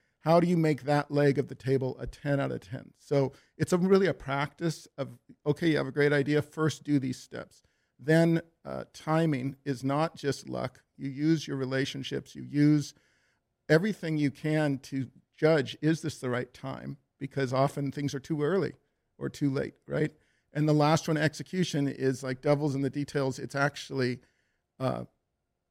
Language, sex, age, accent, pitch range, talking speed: English, male, 50-69, American, 135-160 Hz, 180 wpm